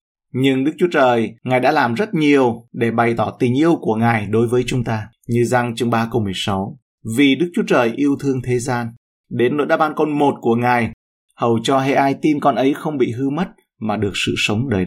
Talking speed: 235 wpm